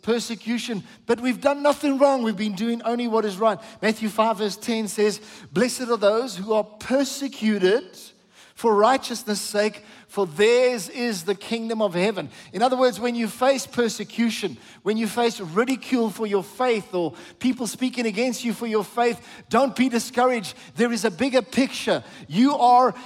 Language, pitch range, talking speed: English, 210-250 Hz, 170 wpm